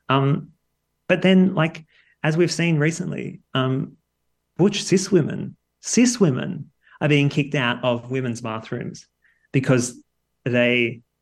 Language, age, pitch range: English, 30-49, 120-155 Hz